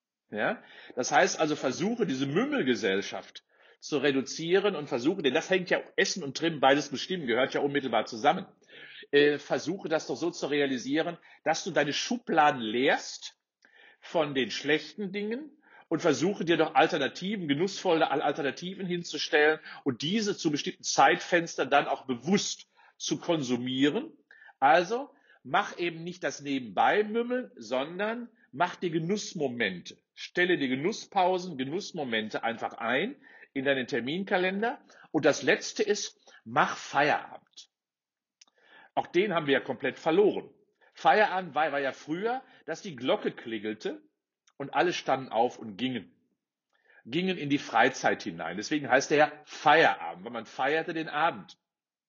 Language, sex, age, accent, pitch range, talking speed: German, male, 50-69, German, 145-200 Hz, 140 wpm